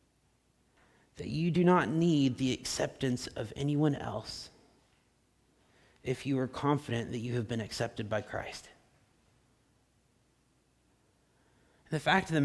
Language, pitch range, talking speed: English, 135-185 Hz, 115 wpm